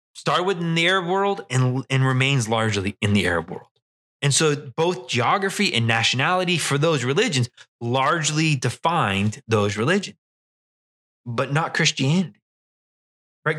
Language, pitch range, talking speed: English, 125-165 Hz, 130 wpm